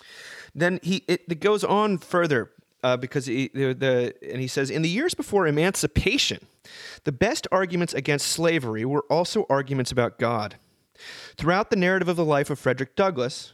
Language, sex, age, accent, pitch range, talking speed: English, male, 30-49, American, 125-170 Hz, 170 wpm